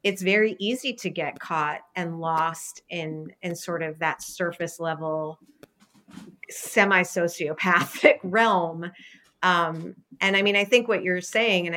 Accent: American